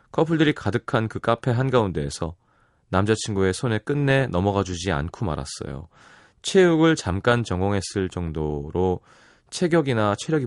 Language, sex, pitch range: Korean, male, 95-135 Hz